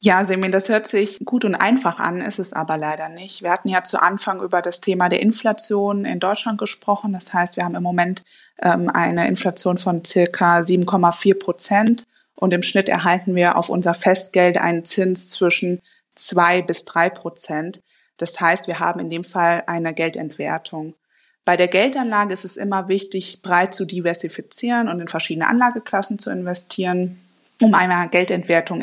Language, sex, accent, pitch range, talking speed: German, female, German, 170-195 Hz, 170 wpm